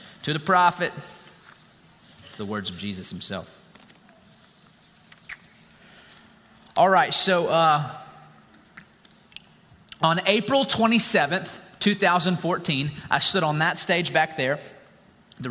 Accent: American